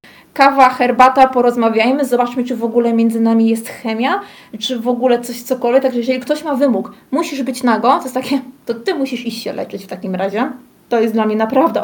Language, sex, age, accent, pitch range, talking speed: Polish, female, 20-39, native, 230-260 Hz, 210 wpm